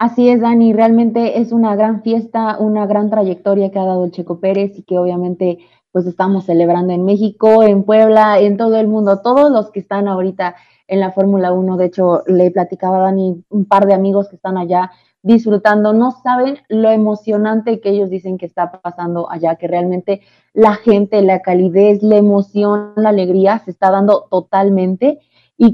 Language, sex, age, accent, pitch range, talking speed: Spanish, female, 20-39, Mexican, 180-215 Hz, 185 wpm